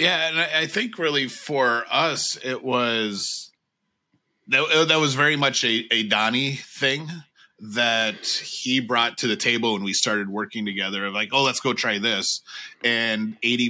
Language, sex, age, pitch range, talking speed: English, male, 30-49, 105-125 Hz, 165 wpm